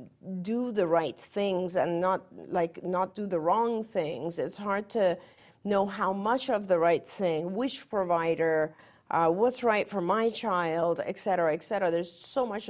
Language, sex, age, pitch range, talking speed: English, female, 50-69, 170-205 Hz, 175 wpm